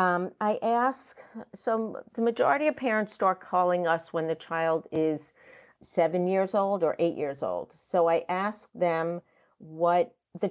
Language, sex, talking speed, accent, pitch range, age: English, female, 160 wpm, American, 165-190 Hz, 50-69